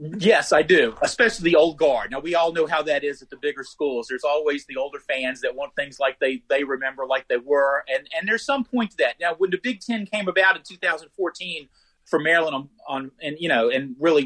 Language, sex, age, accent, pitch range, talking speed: English, male, 40-59, American, 135-200 Hz, 245 wpm